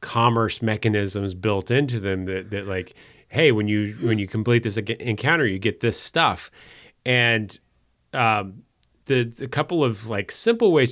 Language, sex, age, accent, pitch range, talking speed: English, male, 30-49, American, 100-120 Hz, 160 wpm